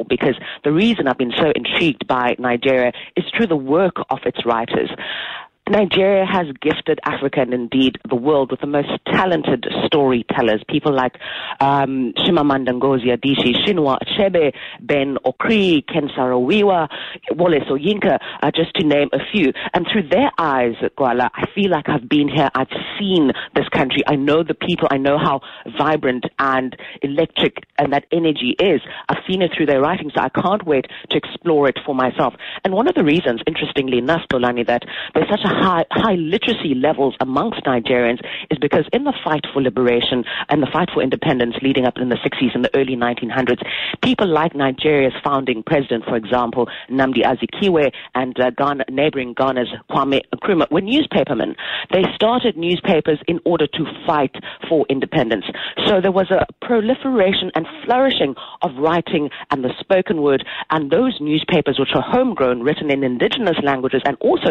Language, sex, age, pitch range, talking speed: English, female, 30-49, 130-170 Hz, 170 wpm